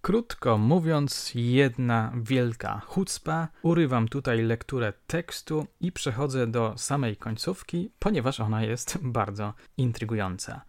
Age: 20-39